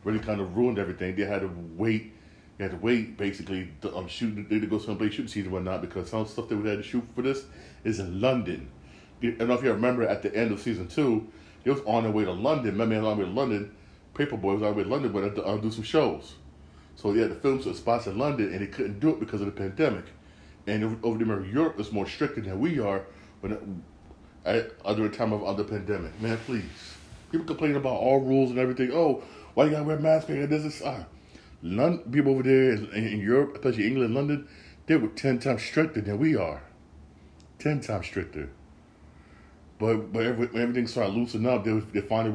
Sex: male